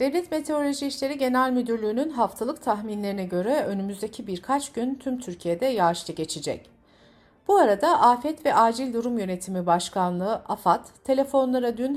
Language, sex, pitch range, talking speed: Turkish, female, 180-280 Hz, 130 wpm